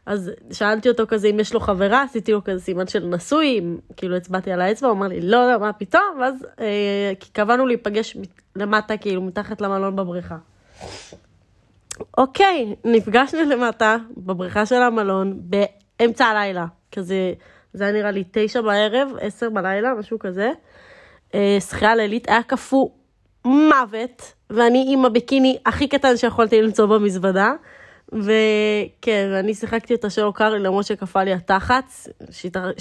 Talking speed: 145 wpm